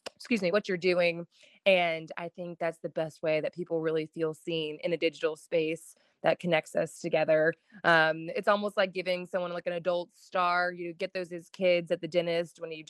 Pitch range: 165-190 Hz